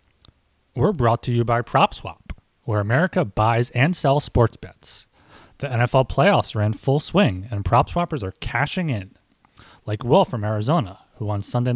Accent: American